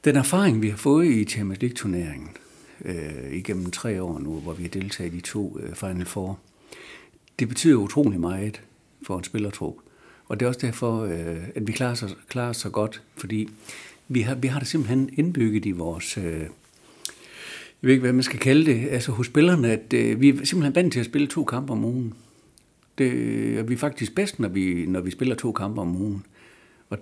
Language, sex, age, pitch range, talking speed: Danish, male, 60-79, 100-135 Hz, 210 wpm